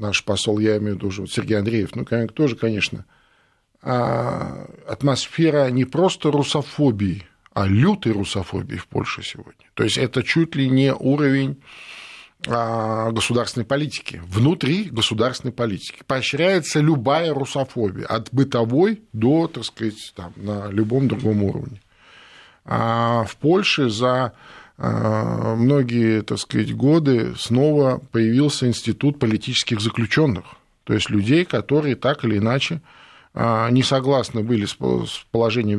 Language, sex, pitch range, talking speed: Russian, male, 110-140 Hz, 120 wpm